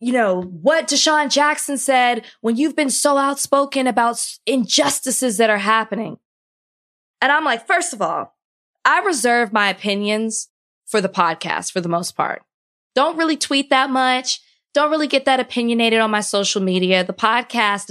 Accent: American